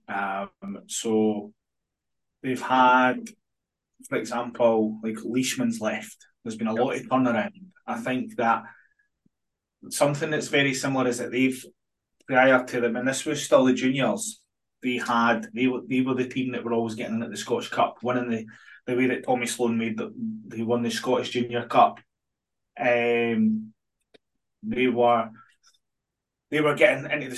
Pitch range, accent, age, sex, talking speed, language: 120-160 Hz, British, 20-39, male, 160 wpm, English